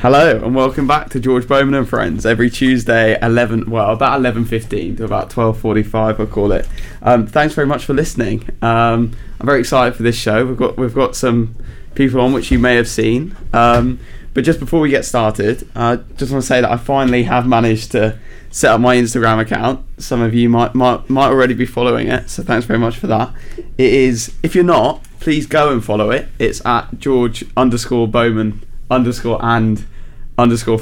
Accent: British